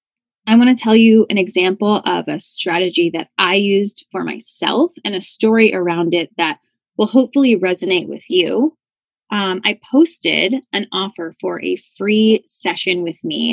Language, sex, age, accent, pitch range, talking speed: English, female, 20-39, American, 180-235 Hz, 165 wpm